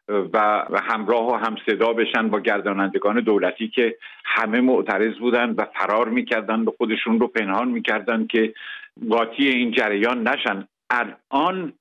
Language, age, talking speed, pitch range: Persian, 70-89, 130 wpm, 110-140 Hz